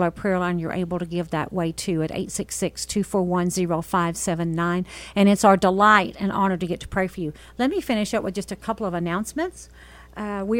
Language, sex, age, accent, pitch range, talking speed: English, female, 50-69, American, 190-225 Hz, 215 wpm